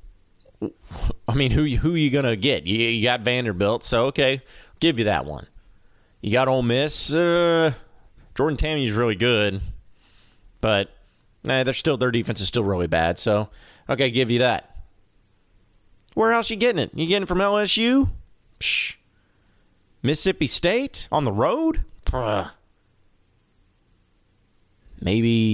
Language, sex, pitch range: English, male, 105-150 Hz